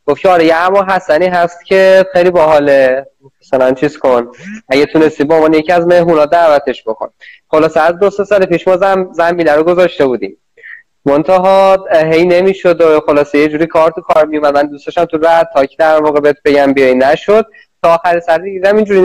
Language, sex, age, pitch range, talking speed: Persian, male, 20-39, 140-180 Hz, 185 wpm